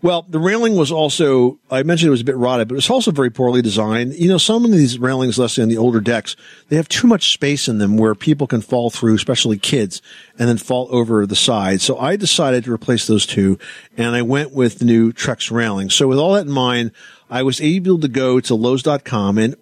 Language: English